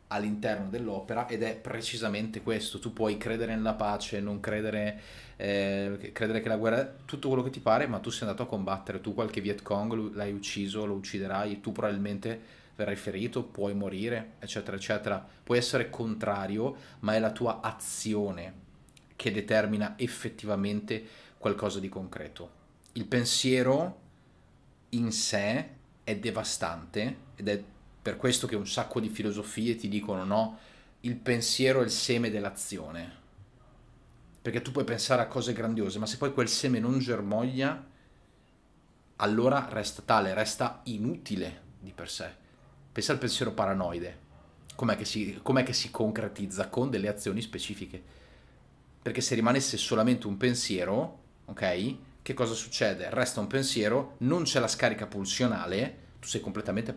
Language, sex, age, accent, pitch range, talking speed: Italian, male, 30-49, native, 100-120 Hz, 150 wpm